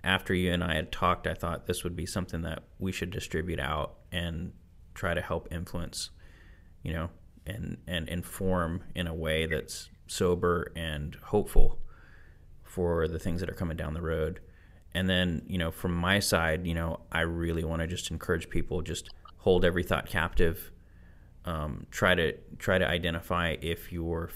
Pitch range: 80-90 Hz